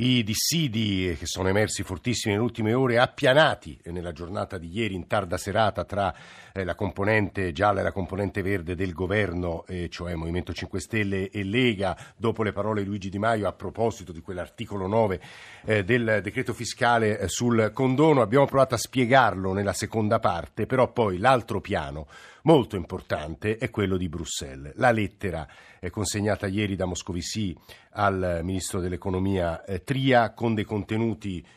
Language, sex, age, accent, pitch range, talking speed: Italian, male, 50-69, native, 95-120 Hz, 150 wpm